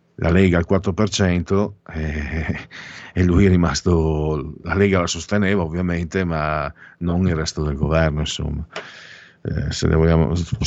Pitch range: 90-110 Hz